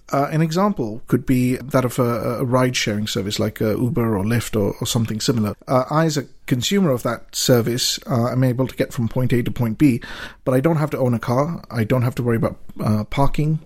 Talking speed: 240 wpm